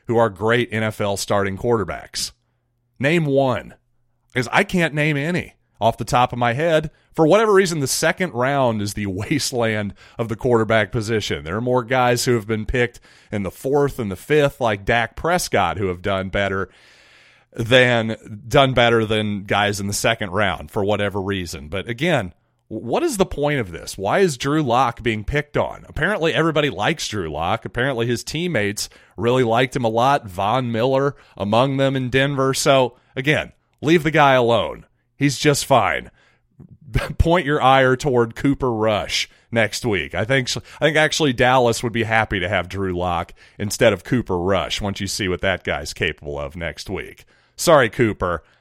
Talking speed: 175 wpm